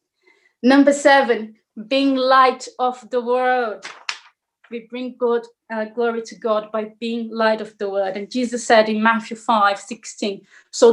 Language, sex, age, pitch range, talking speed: English, female, 30-49, 225-265 Hz, 150 wpm